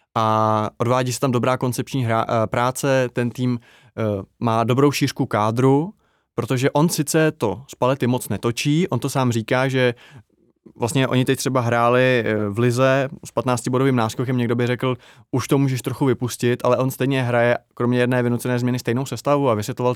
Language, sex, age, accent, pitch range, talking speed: Czech, male, 20-39, native, 120-135 Hz, 170 wpm